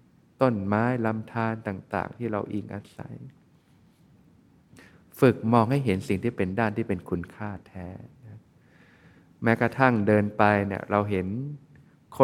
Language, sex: Thai, male